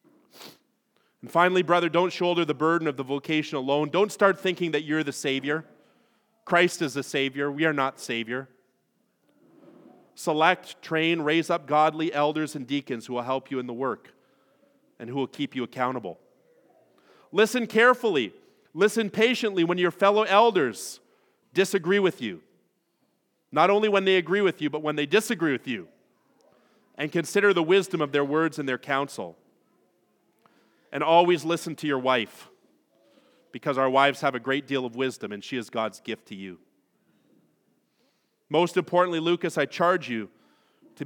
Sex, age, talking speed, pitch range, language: male, 40-59, 160 wpm, 135-175 Hz, English